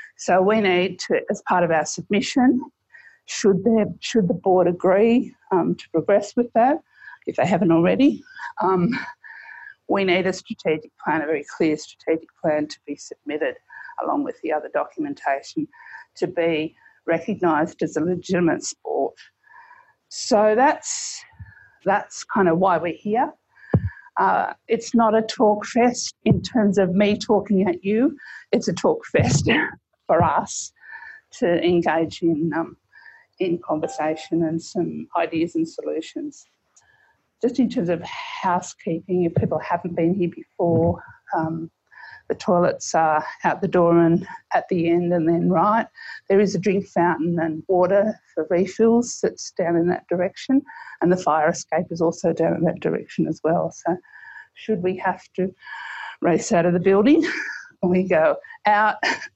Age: 50-69